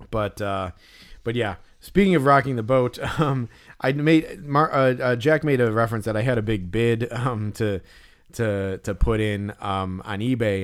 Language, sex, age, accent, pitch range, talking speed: English, male, 30-49, American, 100-125 Hz, 190 wpm